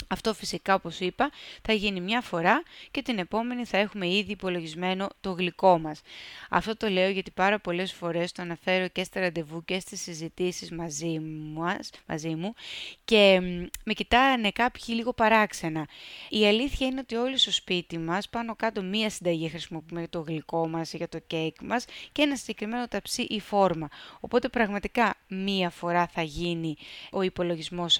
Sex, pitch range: female, 175-220 Hz